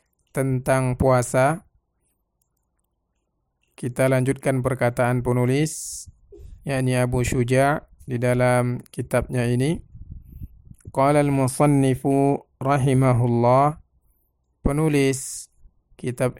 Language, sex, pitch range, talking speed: Indonesian, male, 125-145 Hz, 65 wpm